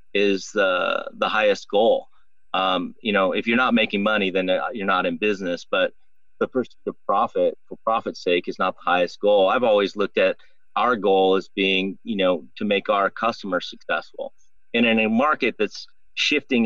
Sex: male